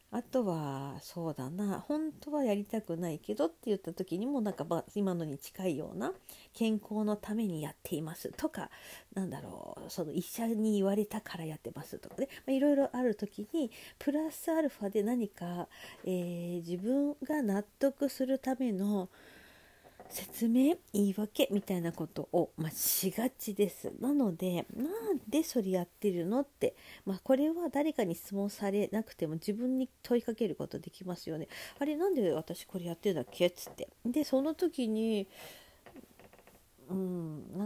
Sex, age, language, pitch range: female, 50-69, Japanese, 175-255 Hz